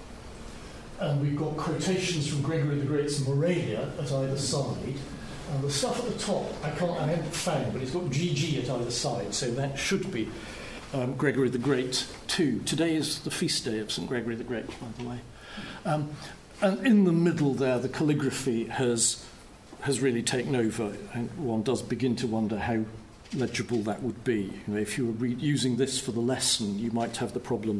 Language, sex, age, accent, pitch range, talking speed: English, male, 50-69, British, 115-145 Hz, 200 wpm